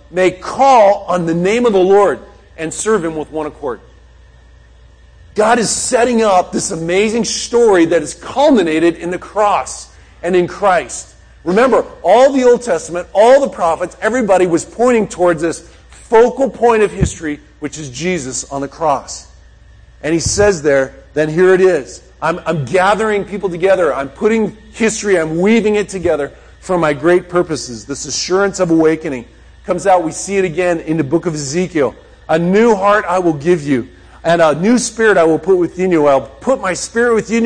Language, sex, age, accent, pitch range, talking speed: English, male, 40-59, American, 160-215 Hz, 180 wpm